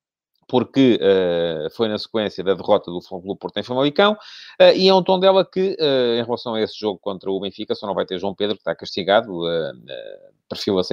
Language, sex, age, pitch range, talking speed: English, male, 30-49, 95-135 Hz, 225 wpm